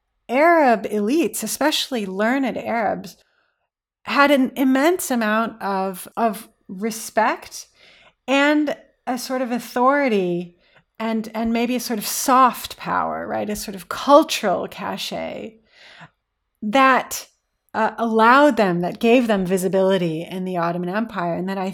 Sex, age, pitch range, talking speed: female, 30-49, 195-255 Hz, 125 wpm